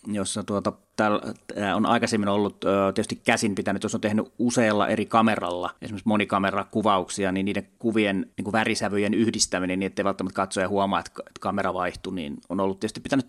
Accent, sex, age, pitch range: native, male, 30-49, 95-110 Hz